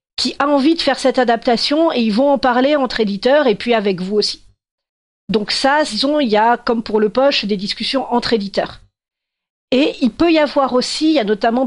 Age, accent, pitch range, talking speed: 40-59, French, 200-250 Hz, 220 wpm